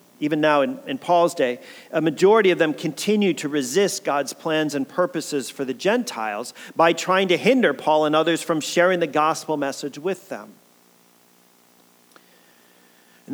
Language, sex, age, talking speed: English, male, 40-59, 155 wpm